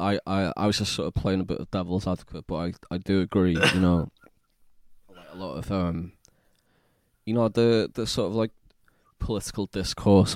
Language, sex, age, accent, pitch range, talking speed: English, male, 20-39, British, 90-100 Hz, 190 wpm